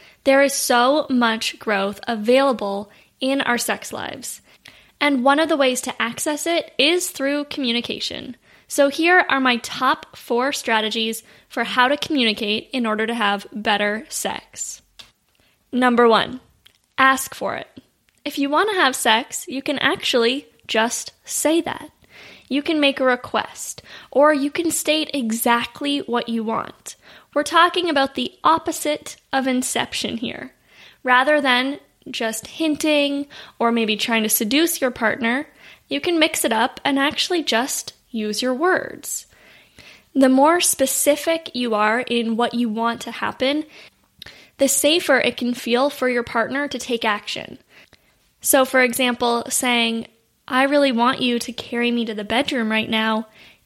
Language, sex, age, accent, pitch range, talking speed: English, female, 10-29, American, 230-290 Hz, 150 wpm